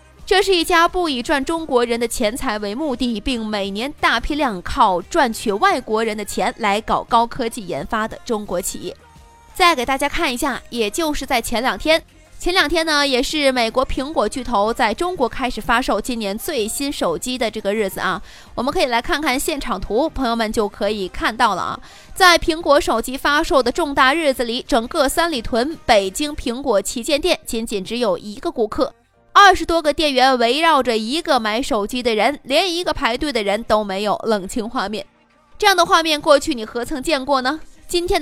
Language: Chinese